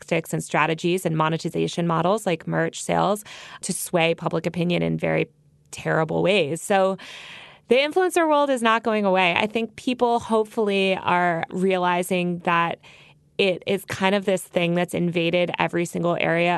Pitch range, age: 170-200 Hz, 20-39